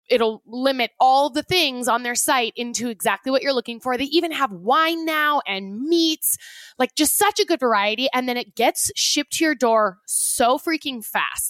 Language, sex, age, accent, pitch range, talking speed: English, female, 20-39, American, 220-285 Hz, 200 wpm